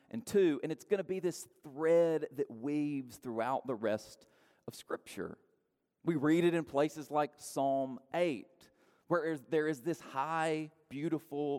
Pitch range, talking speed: 140-185 Hz, 155 wpm